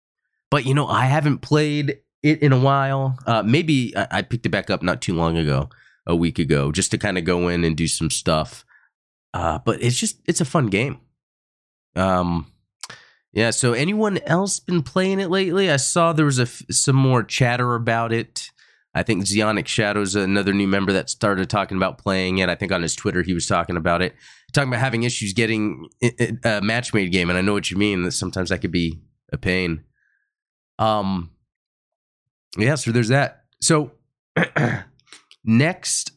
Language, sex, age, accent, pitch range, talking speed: English, male, 20-39, American, 95-140 Hz, 190 wpm